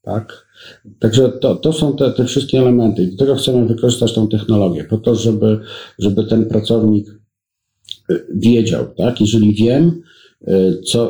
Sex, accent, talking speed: male, native, 145 wpm